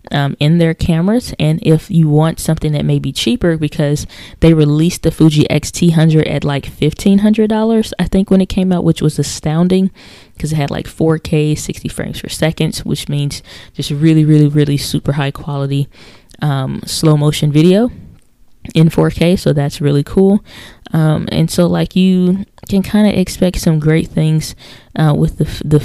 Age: 20-39